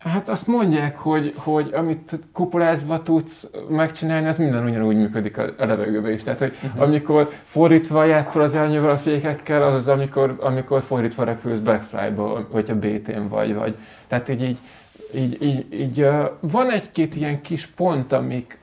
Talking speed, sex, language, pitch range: 160 wpm, male, Hungarian, 130-170 Hz